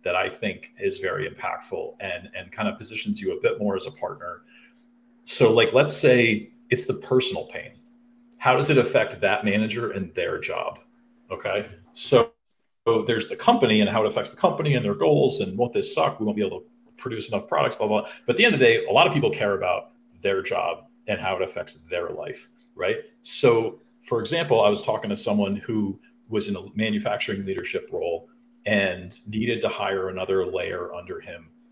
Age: 40-59